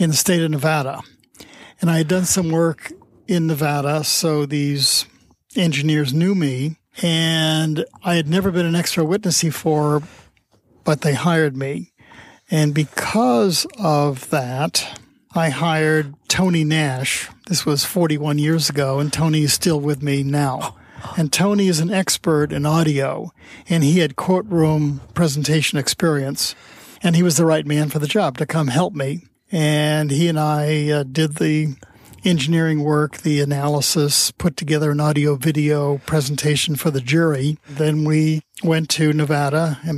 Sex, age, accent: male, 50-69, American